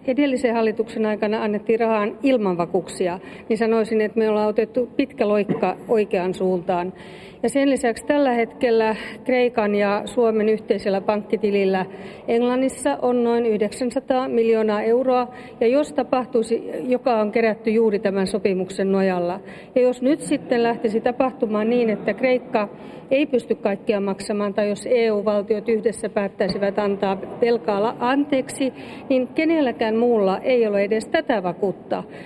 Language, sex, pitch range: Finnish, female, 205-245 Hz